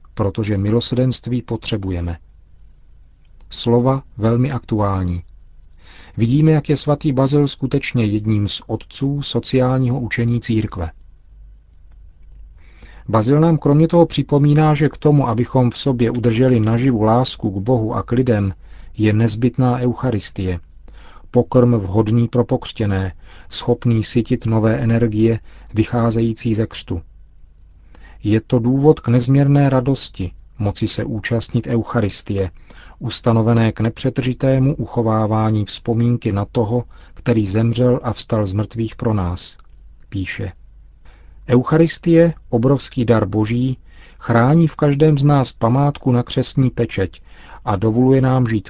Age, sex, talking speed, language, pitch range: 40-59, male, 115 wpm, Czech, 95-125 Hz